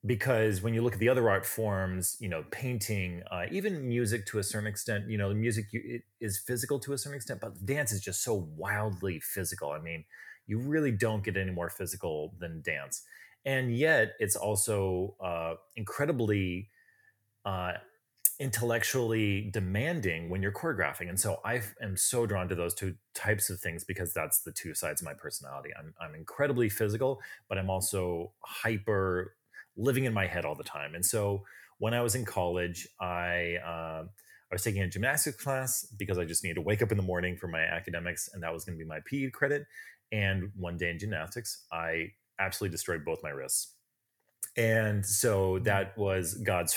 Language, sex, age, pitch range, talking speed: English, male, 30-49, 90-115 Hz, 190 wpm